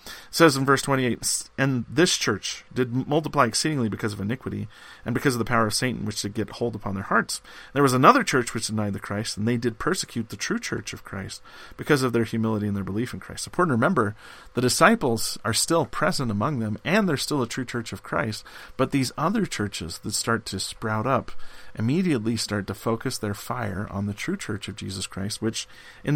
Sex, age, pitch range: male, 40-59, 110-135 Hz